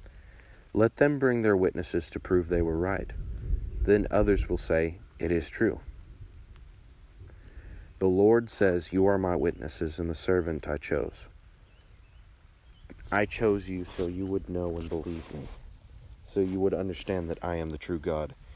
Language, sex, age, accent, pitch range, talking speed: English, male, 40-59, American, 80-100 Hz, 160 wpm